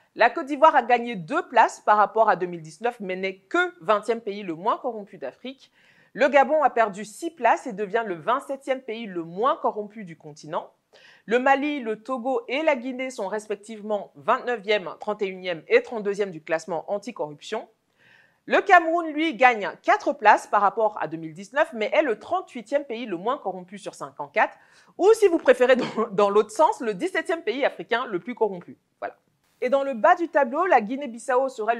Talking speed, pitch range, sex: 180 wpm, 200-285 Hz, female